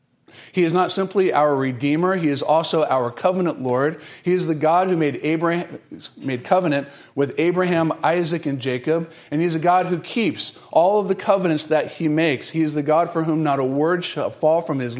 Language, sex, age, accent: English, male, 40-59, American